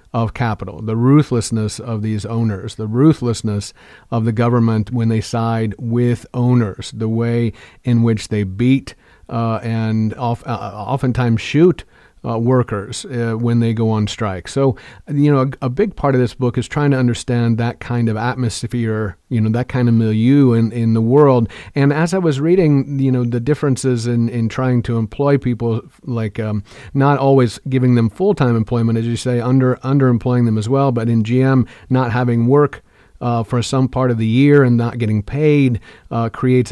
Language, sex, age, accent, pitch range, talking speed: English, male, 40-59, American, 115-130 Hz, 185 wpm